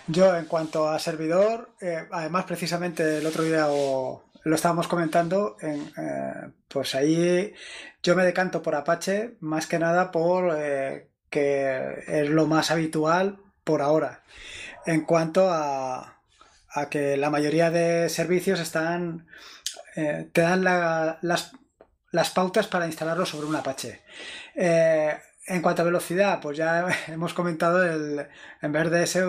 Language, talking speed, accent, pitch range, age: Spanish, 145 wpm, Spanish, 155-180 Hz, 20-39